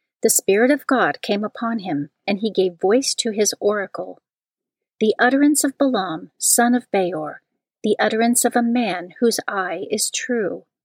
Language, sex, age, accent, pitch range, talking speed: English, female, 40-59, American, 185-240 Hz, 165 wpm